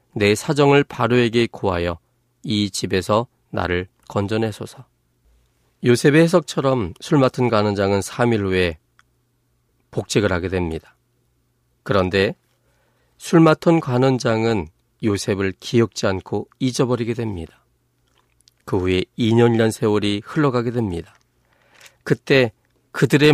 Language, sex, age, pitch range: Korean, male, 40-59, 95-130 Hz